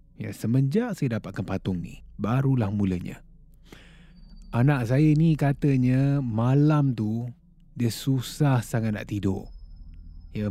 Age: 30-49